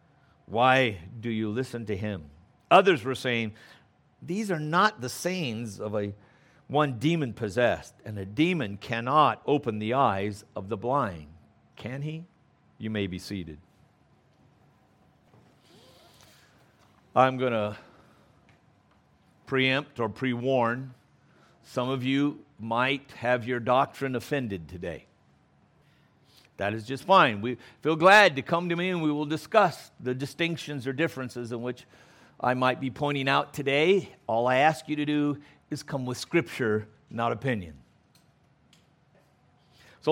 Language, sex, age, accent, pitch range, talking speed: English, male, 60-79, American, 120-150 Hz, 135 wpm